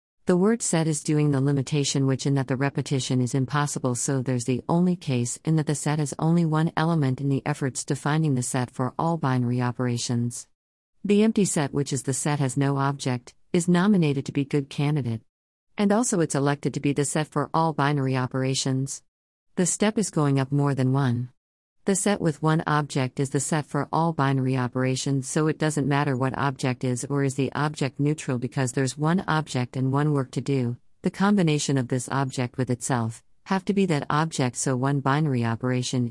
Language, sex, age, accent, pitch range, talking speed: English, female, 50-69, American, 130-155 Hz, 205 wpm